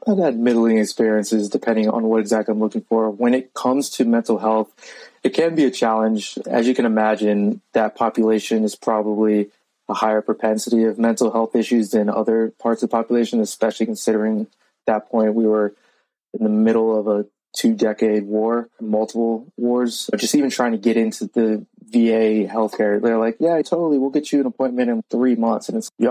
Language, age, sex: English, 20-39, male